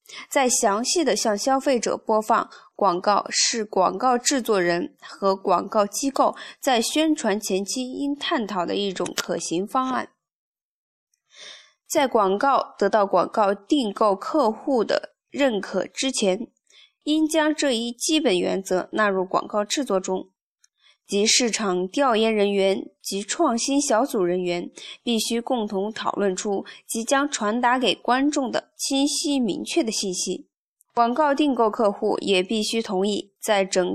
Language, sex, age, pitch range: Chinese, female, 20-39, 200-275 Hz